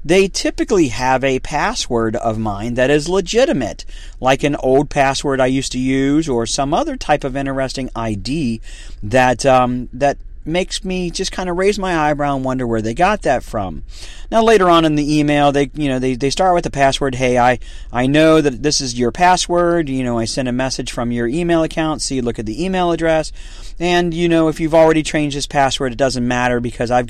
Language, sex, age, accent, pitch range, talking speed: English, male, 40-59, American, 115-160 Hz, 215 wpm